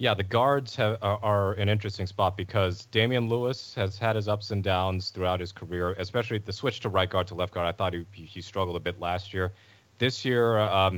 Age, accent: 30-49, American